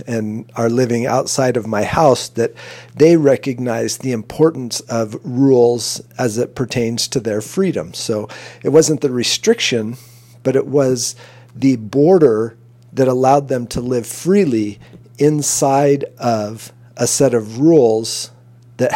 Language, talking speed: English, 135 wpm